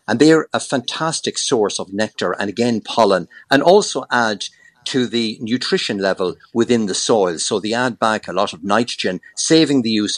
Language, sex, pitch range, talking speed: English, male, 100-135 Hz, 190 wpm